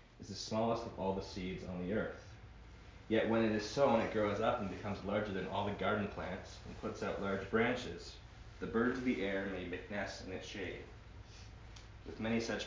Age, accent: 30-49, American